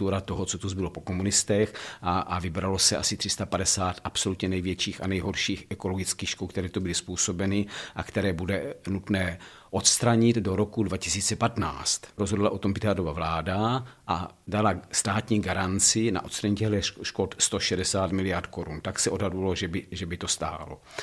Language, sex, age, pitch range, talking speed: Czech, male, 50-69, 90-105 Hz, 155 wpm